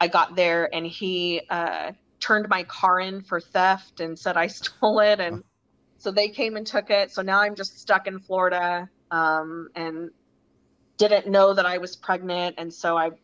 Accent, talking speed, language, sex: American, 190 wpm, English, female